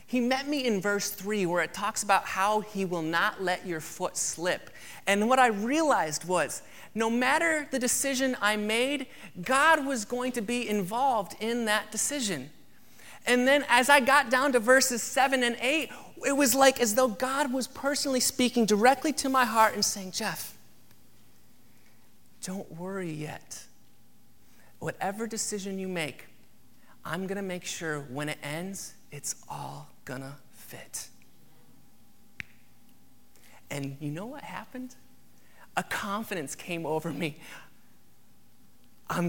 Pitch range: 175-255 Hz